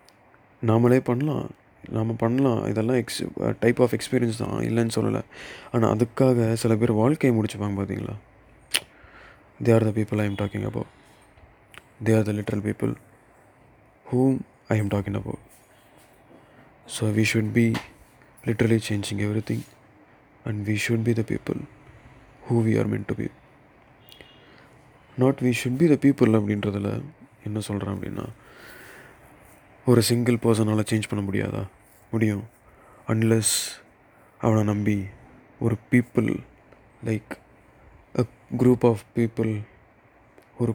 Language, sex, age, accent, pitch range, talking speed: Tamil, male, 20-39, native, 105-125 Hz, 125 wpm